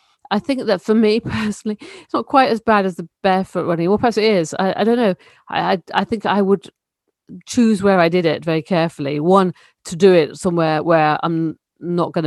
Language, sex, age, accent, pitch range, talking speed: English, female, 40-59, British, 155-195 Hz, 220 wpm